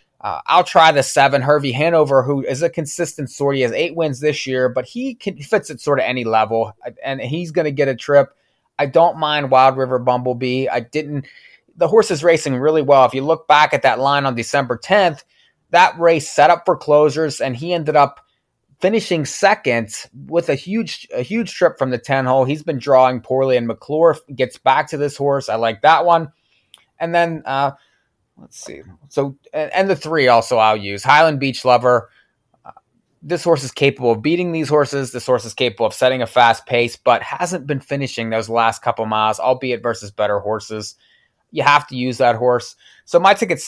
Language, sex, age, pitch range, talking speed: English, male, 20-39, 125-155 Hz, 200 wpm